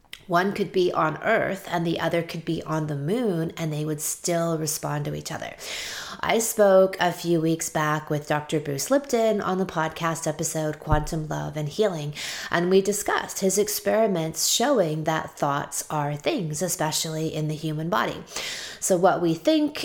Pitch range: 150-180 Hz